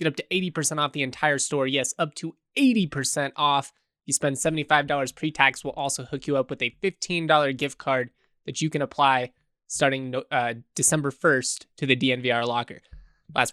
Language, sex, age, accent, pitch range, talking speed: English, male, 20-39, American, 125-155 Hz, 180 wpm